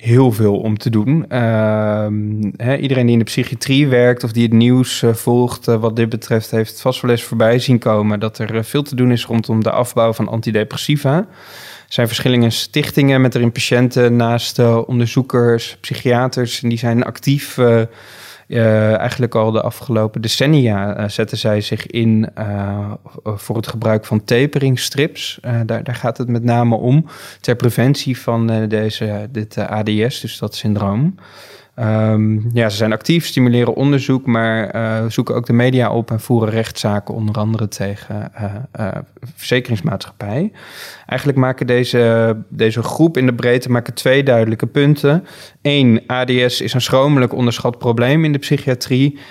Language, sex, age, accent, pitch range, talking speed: Dutch, male, 20-39, Dutch, 110-130 Hz, 160 wpm